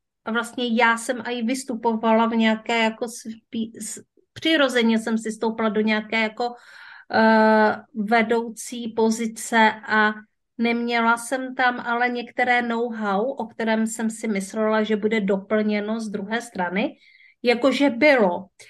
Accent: native